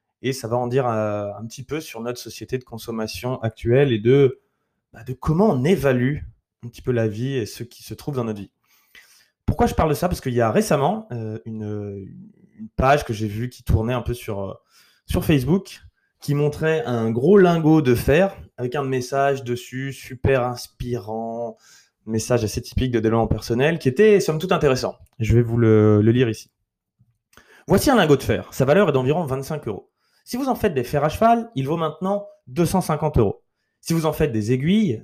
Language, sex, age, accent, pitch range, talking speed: French, male, 20-39, French, 115-150 Hz, 200 wpm